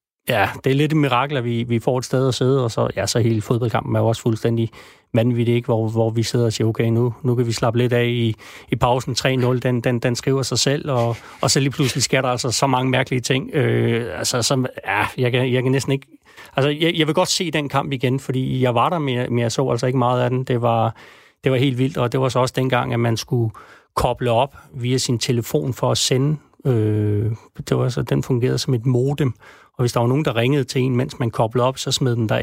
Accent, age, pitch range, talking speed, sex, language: native, 30-49, 120-135 Hz, 240 wpm, male, Danish